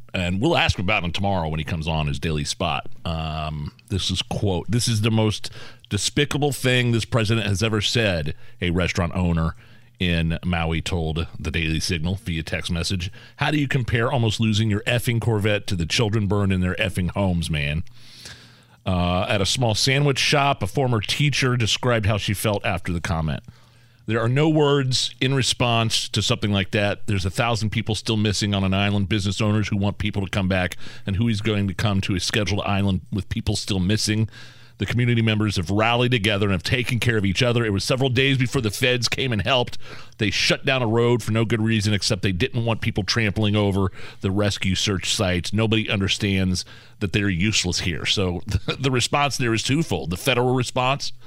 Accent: American